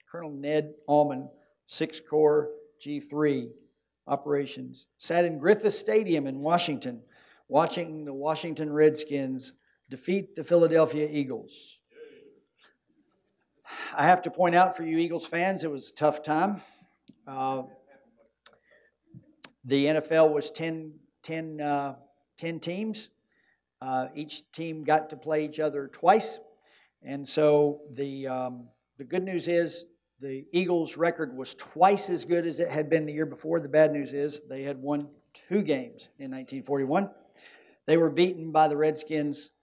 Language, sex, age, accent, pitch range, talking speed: English, male, 50-69, American, 145-170 Hz, 140 wpm